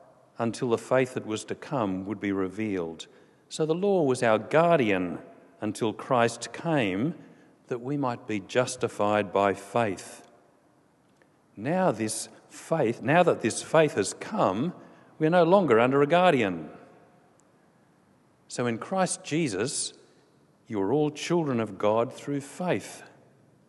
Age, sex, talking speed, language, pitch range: 50-69, male, 130 wpm, English, 110-150 Hz